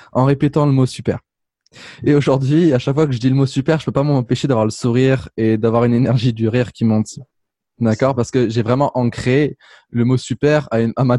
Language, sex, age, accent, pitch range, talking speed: French, male, 20-39, French, 110-135 Hz, 240 wpm